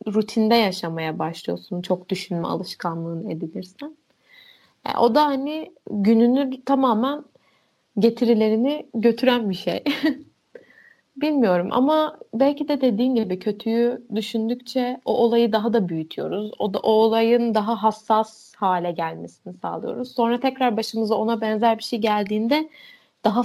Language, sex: Turkish, female